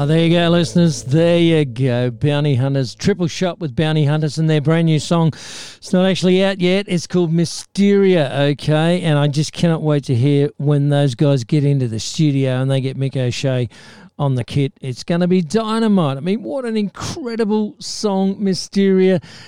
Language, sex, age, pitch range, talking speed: English, male, 50-69, 140-180 Hz, 190 wpm